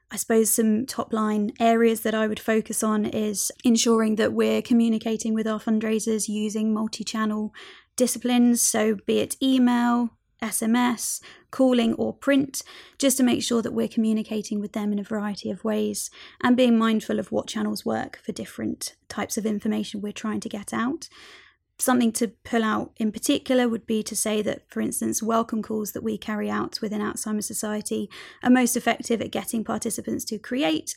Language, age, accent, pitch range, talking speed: English, 20-39, British, 215-240 Hz, 175 wpm